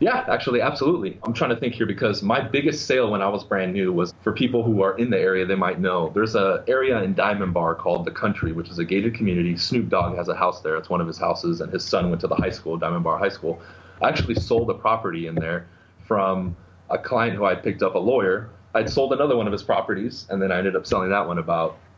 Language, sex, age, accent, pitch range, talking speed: English, male, 30-49, American, 90-115 Hz, 265 wpm